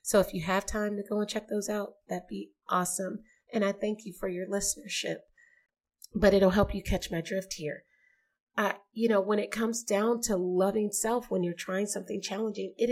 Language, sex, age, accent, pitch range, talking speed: English, female, 30-49, American, 185-220 Hz, 205 wpm